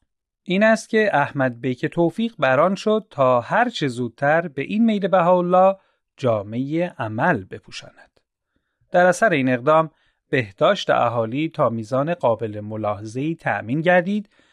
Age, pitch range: 40-59, 125-190 Hz